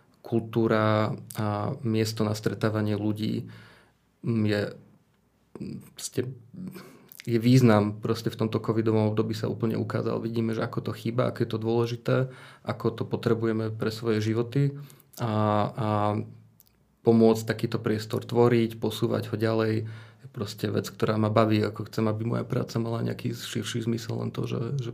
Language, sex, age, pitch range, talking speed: Slovak, male, 20-39, 110-120 Hz, 145 wpm